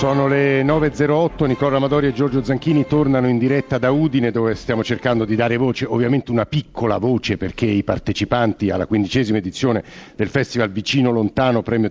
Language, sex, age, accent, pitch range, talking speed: Italian, male, 50-69, native, 110-140 Hz, 170 wpm